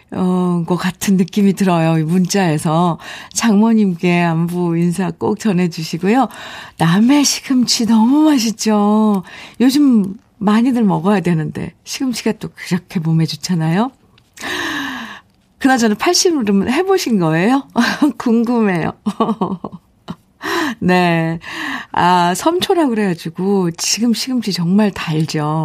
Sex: female